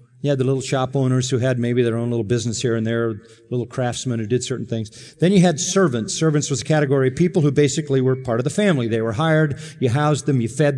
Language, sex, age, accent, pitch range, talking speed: English, male, 40-59, American, 120-150 Hz, 260 wpm